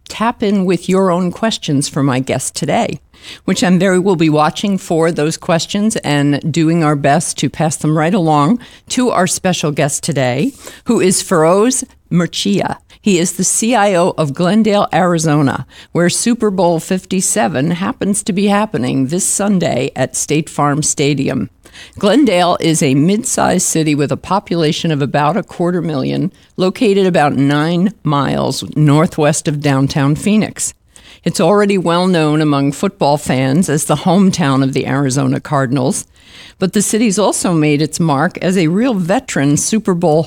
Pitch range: 145-190 Hz